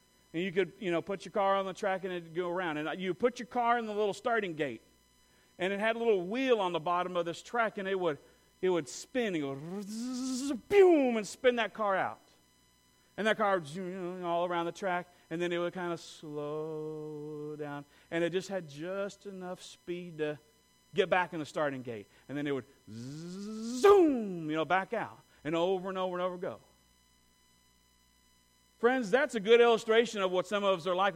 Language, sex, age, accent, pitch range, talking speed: English, male, 40-59, American, 165-240 Hz, 210 wpm